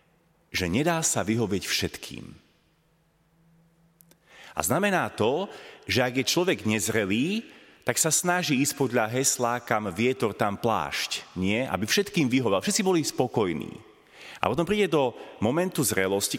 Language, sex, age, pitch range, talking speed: Slovak, male, 30-49, 110-150 Hz, 130 wpm